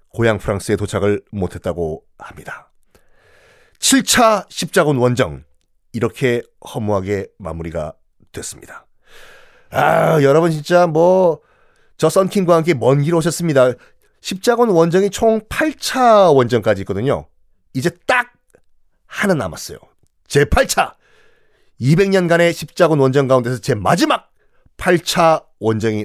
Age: 40-59